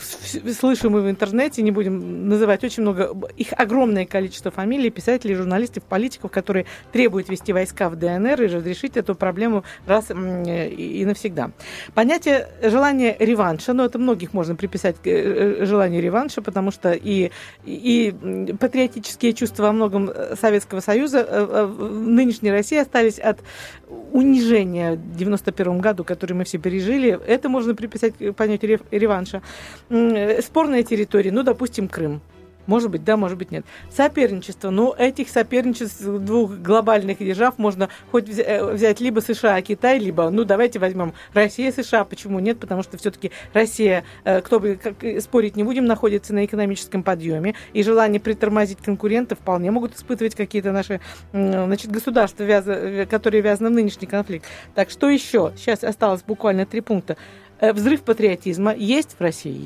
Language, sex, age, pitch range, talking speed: Russian, female, 40-59, 195-235 Hz, 145 wpm